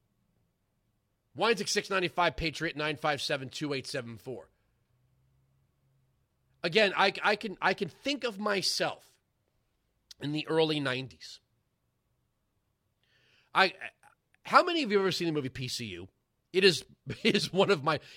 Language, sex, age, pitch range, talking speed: English, male, 30-49, 125-190 Hz, 115 wpm